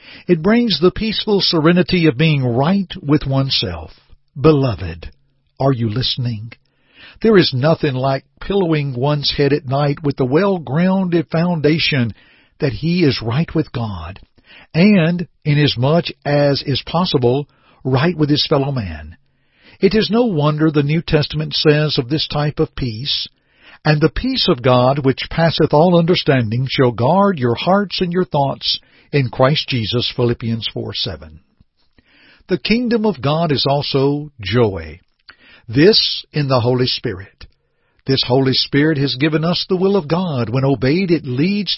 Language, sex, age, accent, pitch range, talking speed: English, male, 60-79, American, 125-165 Hz, 150 wpm